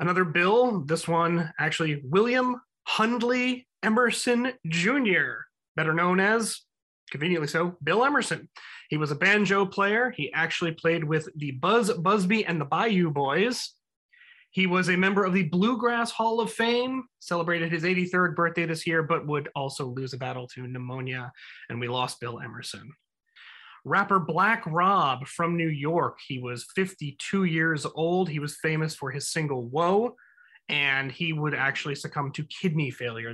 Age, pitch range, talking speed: 30-49, 145-195 Hz, 155 wpm